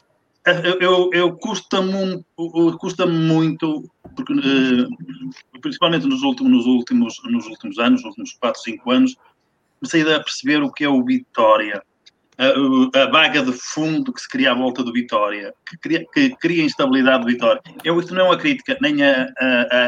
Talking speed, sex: 150 wpm, male